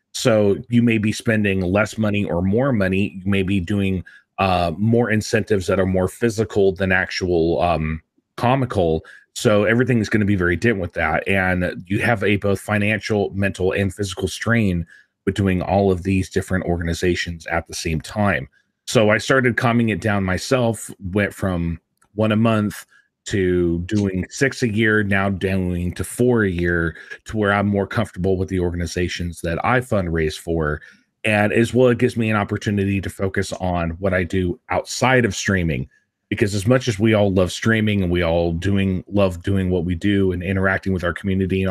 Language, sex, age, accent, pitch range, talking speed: English, male, 30-49, American, 90-110 Hz, 190 wpm